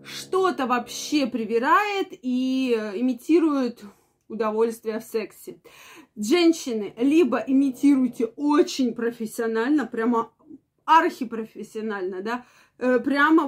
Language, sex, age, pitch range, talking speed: Russian, female, 20-39, 225-290 Hz, 75 wpm